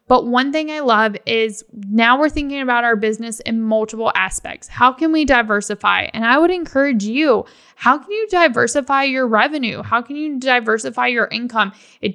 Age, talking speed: 10-29, 185 wpm